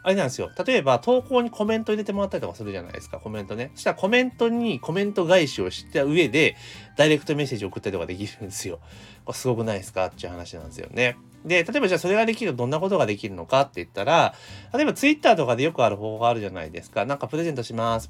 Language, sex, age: Japanese, male, 30-49